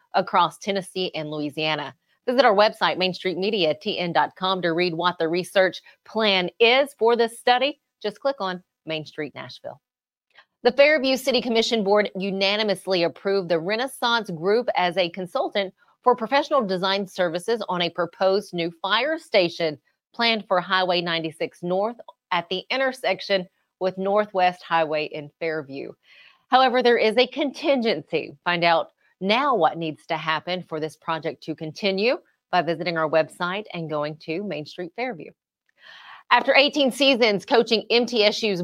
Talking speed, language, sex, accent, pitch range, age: 150 wpm, English, female, American, 175-230 Hz, 30-49